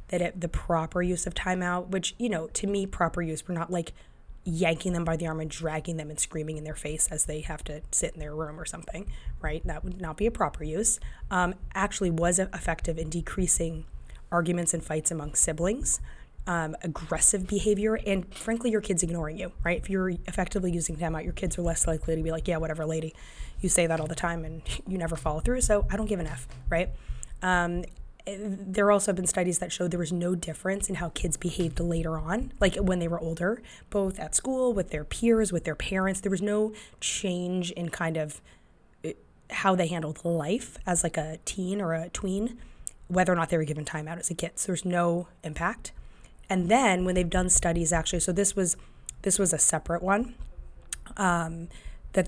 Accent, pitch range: American, 160-190 Hz